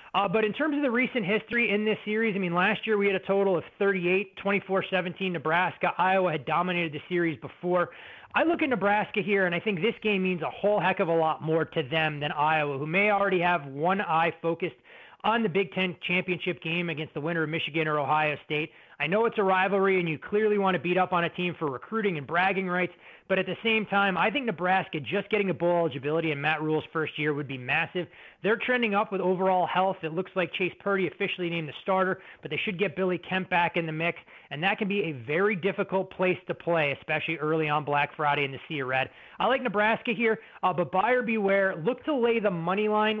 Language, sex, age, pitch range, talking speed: English, male, 30-49, 155-195 Hz, 235 wpm